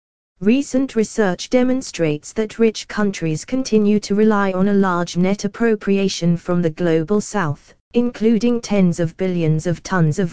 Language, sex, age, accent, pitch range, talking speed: English, female, 20-39, British, 170-210 Hz, 145 wpm